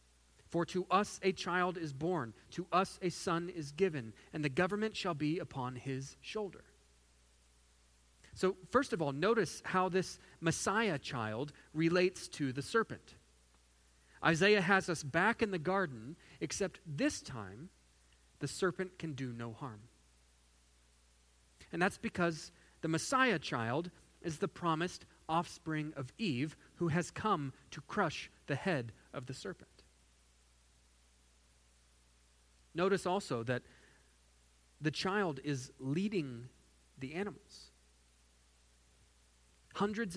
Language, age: English, 30-49